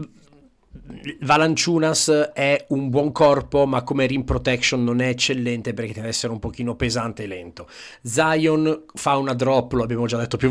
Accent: native